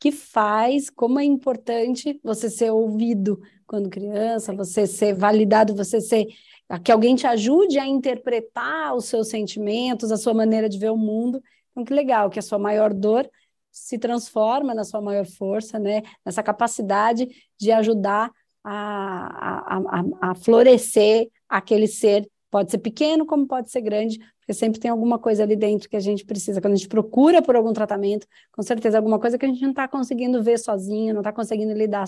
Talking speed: 180 wpm